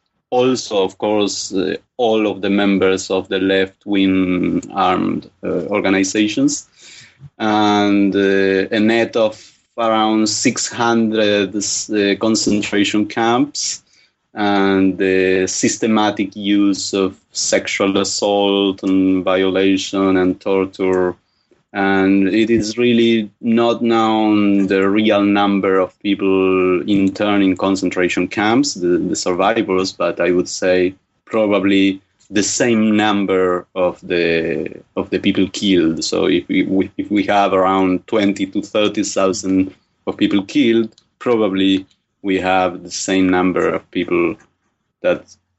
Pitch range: 95-110 Hz